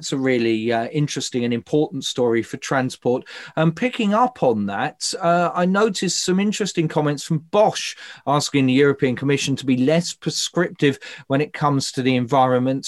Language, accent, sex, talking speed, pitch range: English, British, male, 175 wpm, 135-170 Hz